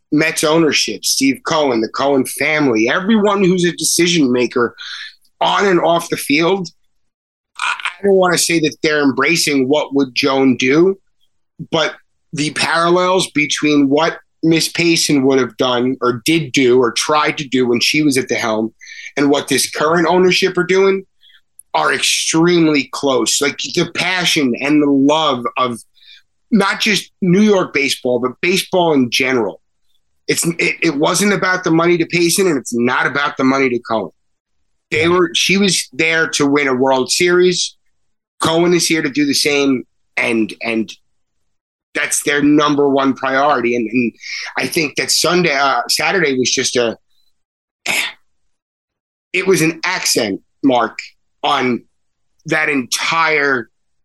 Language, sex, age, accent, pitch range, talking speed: English, male, 30-49, American, 135-175 Hz, 150 wpm